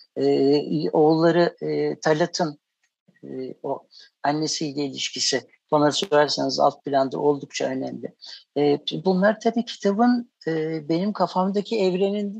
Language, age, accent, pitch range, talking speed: Turkish, 60-79, native, 150-205 Hz, 95 wpm